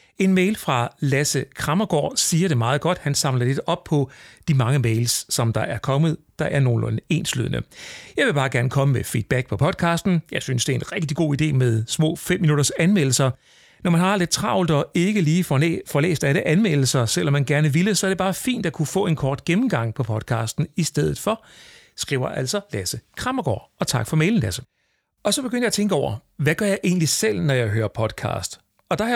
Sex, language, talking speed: male, Danish, 220 wpm